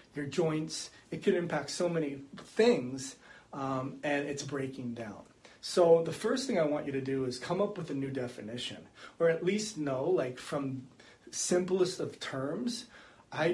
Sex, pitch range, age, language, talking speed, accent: male, 130-155 Hz, 30-49, English, 175 wpm, American